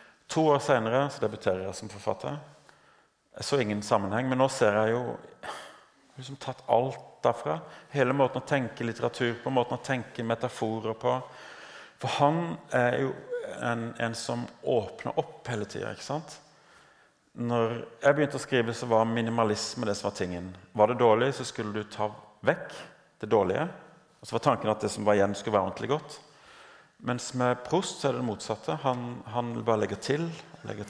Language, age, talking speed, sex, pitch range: Danish, 40-59, 180 wpm, male, 105-135 Hz